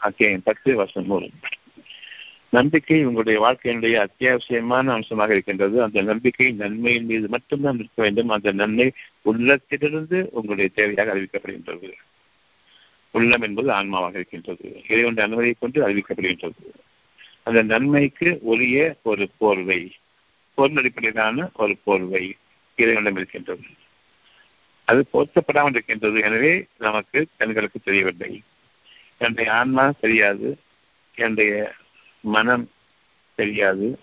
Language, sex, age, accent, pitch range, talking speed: Tamil, male, 60-79, native, 105-125 Hz, 95 wpm